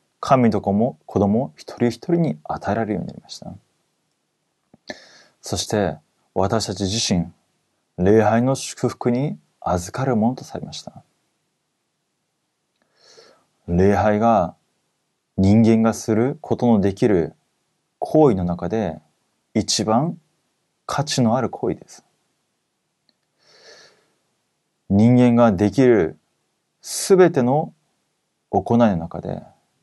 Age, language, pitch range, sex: 30-49, Korean, 100-130 Hz, male